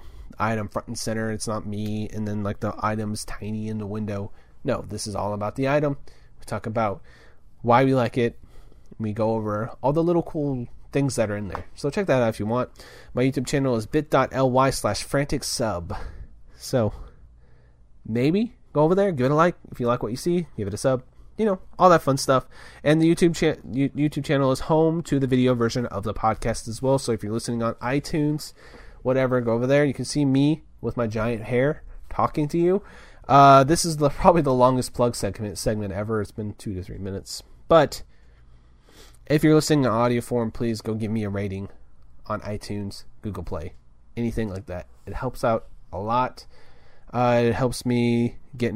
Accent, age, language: American, 30-49, English